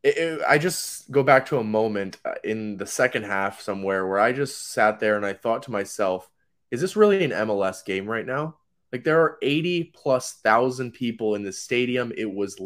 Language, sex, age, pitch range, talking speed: English, male, 20-39, 100-125 Hz, 210 wpm